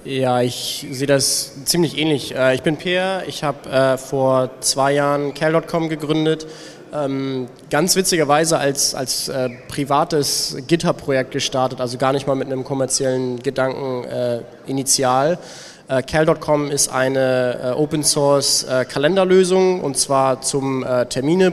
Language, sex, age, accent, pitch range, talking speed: German, male, 20-39, German, 130-150 Hz, 115 wpm